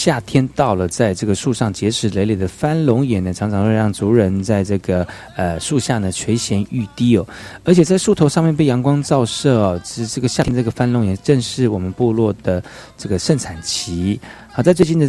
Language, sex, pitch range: Chinese, male, 100-135 Hz